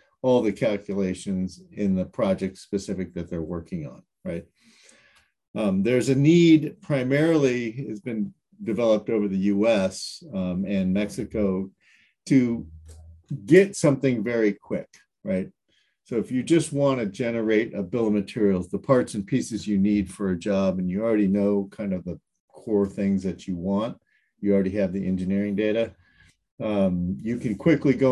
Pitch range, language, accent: 95-115 Hz, English, American